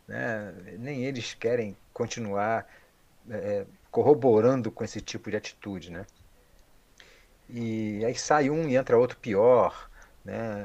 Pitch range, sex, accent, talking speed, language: 100-135 Hz, male, Brazilian, 125 wpm, Portuguese